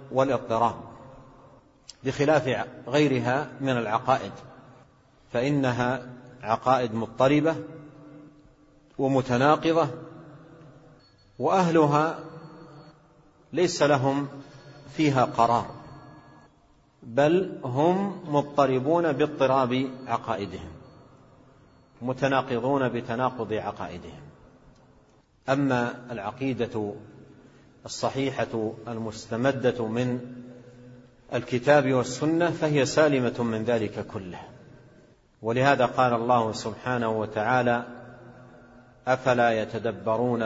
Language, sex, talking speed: Arabic, male, 60 wpm